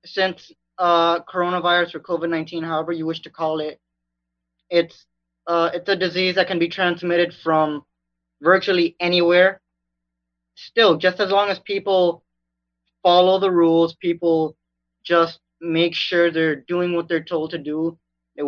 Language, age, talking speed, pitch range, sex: English, 20-39, 145 wpm, 140-175 Hz, male